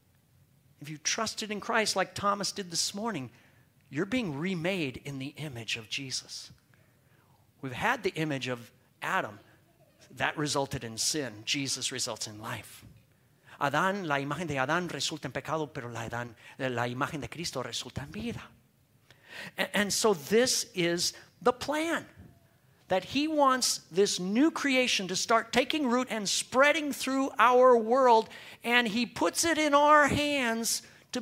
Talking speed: 150 wpm